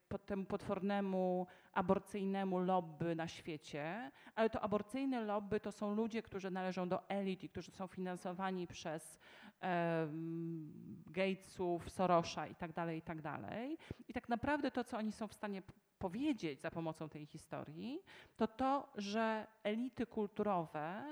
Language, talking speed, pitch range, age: Polish, 140 wpm, 180-240 Hz, 40-59